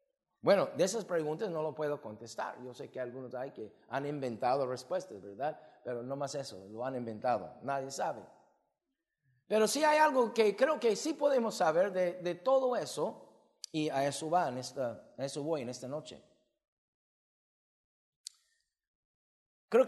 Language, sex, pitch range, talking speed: English, male, 130-185 Hz, 150 wpm